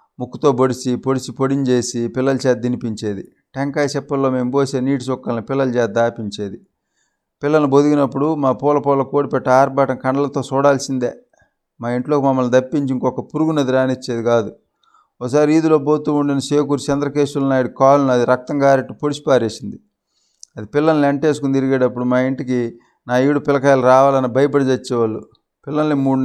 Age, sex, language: 30-49, male, Telugu